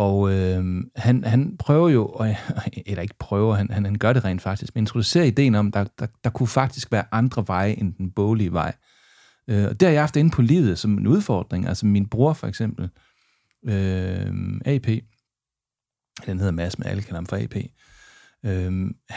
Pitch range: 105-125 Hz